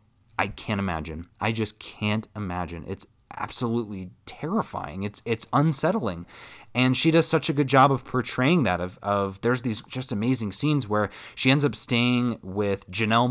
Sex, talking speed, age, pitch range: male, 165 wpm, 20-39, 105-130 Hz